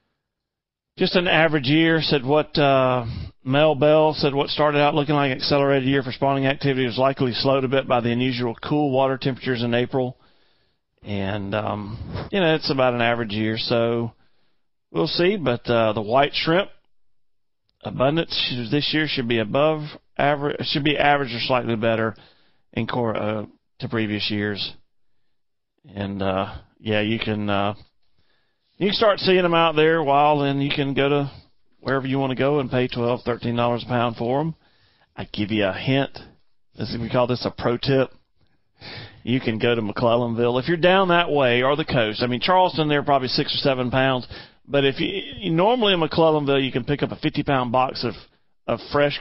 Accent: American